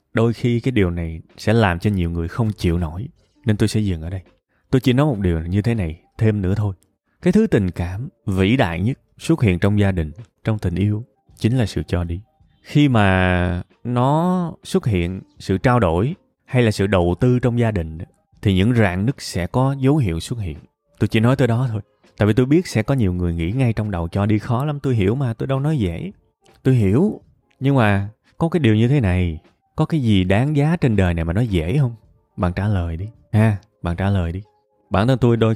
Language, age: Vietnamese, 20-39